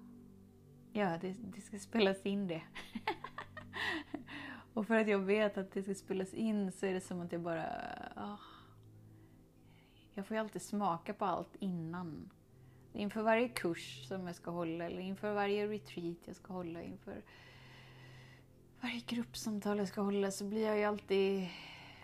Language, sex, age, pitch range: Swedish, female, 20-39, 165-205 Hz